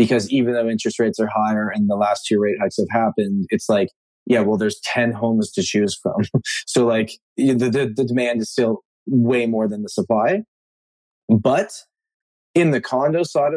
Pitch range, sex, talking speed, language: 110-135 Hz, male, 190 wpm, English